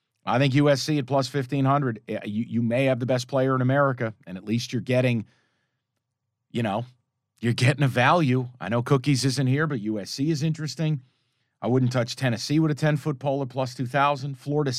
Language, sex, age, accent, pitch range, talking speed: English, male, 40-59, American, 125-150 Hz, 190 wpm